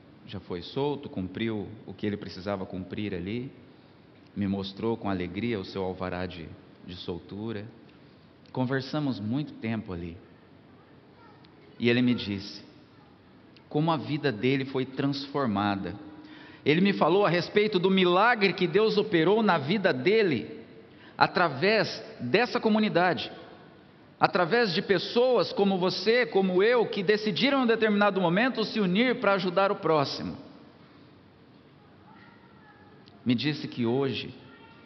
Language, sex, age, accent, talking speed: Portuguese, male, 50-69, Brazilian, 125 wpm